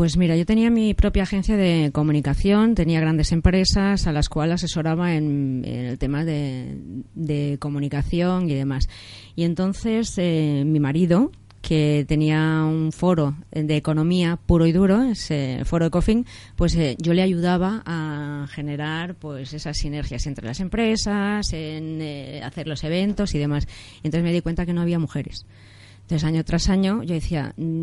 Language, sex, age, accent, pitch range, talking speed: Spanish, female, 20-39, Spanish, 150-185 Hz, 170 wpm